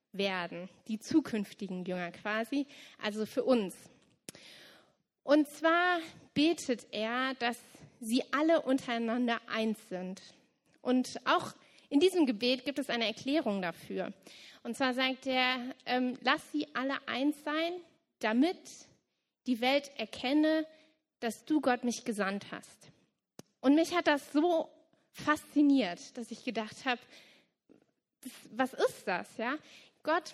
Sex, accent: female, German